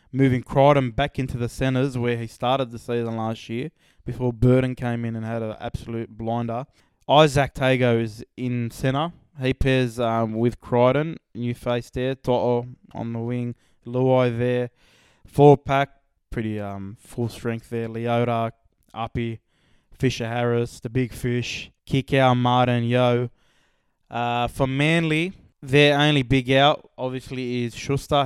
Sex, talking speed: male, 140 wpm